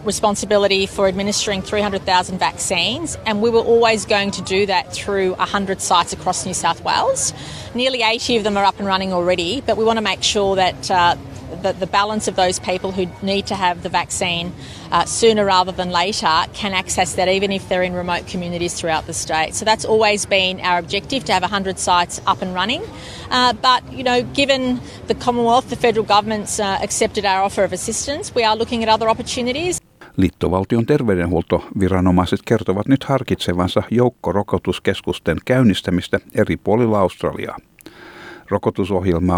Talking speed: 170 wpm